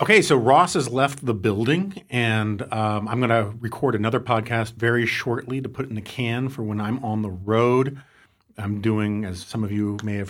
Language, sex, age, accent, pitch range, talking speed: English, male, 40-59, American, 105-120 Hz, 210 wpm